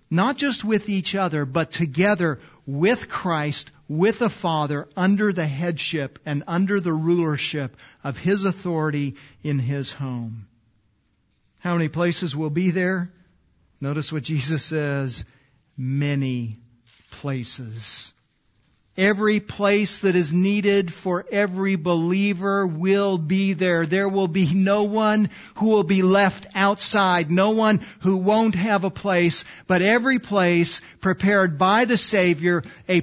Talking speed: 135 wpm